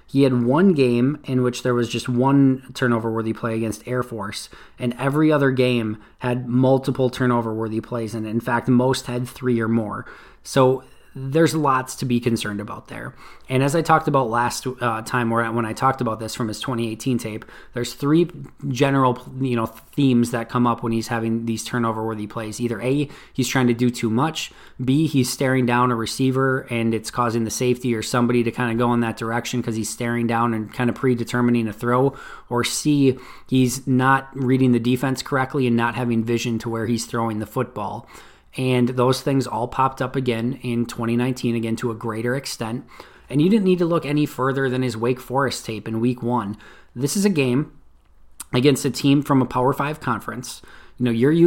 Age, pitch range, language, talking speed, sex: 20-39, 115-135 Hz, English, 200 wpm, male